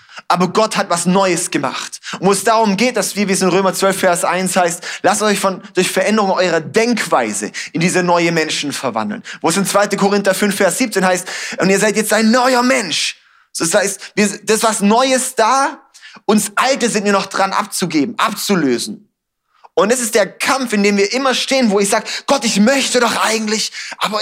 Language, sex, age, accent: German, male, 20-39, German